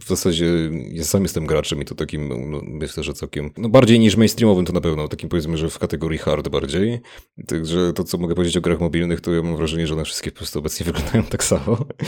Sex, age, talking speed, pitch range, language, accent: male, 30-49, 235 wpm, 75-95 Hz, Polish, native